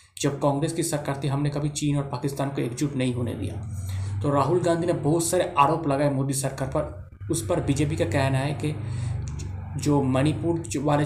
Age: 20-39